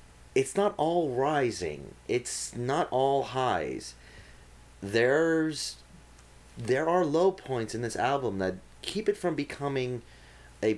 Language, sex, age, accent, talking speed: English, male, 30-49, American, 120 wpm